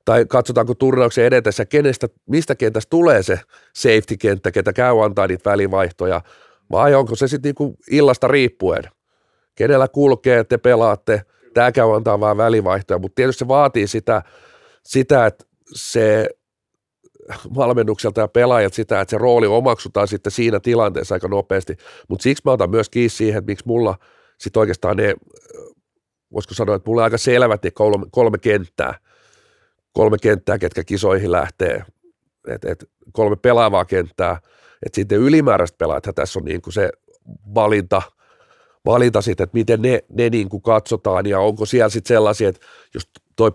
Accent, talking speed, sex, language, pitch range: native, 155 wpm, male, Finnish, 105-145 Hz